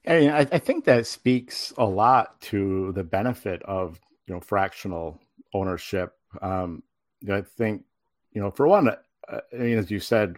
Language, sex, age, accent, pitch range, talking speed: English, male, 50-69, American, 90-105 Hz, 160 wpm